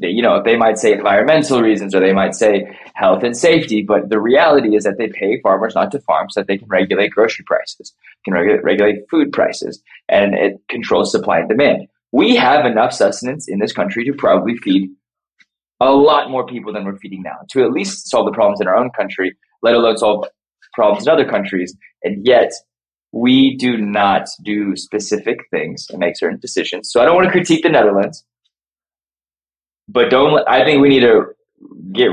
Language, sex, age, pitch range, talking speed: English, male, 20-39, 105-155 Hz, 195 wpm